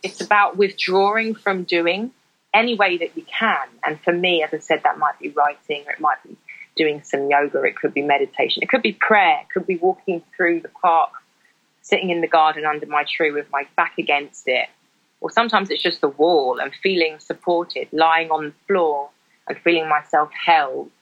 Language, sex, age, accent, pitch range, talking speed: English, female, 20-39, British, 155-205 Hz, 205 wpm